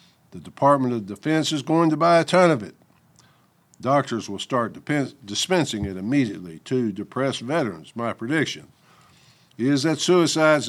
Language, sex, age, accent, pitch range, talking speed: English, male, 60-79, American, 115-150 Hz, 145 wpm